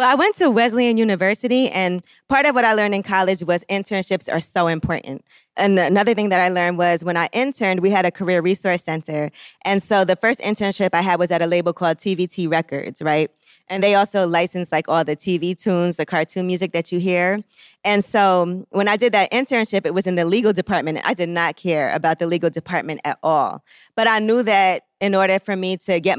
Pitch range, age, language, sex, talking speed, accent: 170-195 Hz, 20-39, English, female, 225 wpm, American